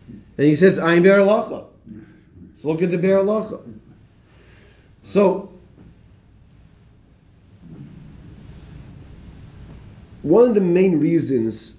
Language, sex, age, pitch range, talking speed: English, male, 40-59, 110-155 Hz, 95 wpm